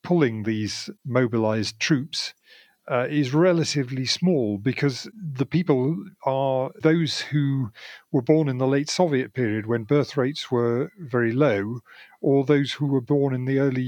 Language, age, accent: English, 40-59, British